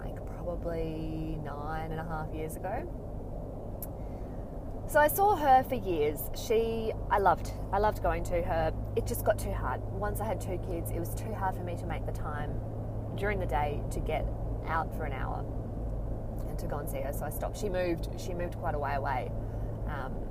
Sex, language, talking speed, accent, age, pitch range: female, English, 200 wpm, Australian, 20-39, 110-125 Hz